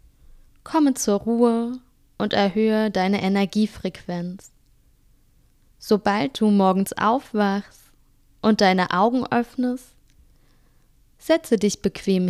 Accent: German